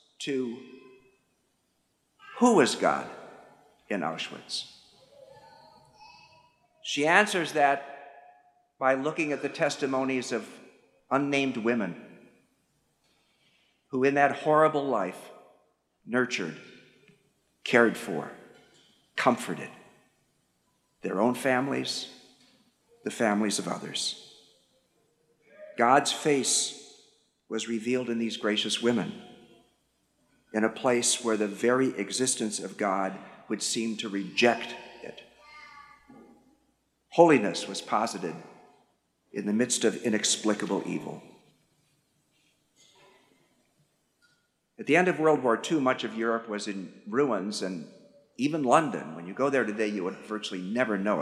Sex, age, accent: male, 50-69, American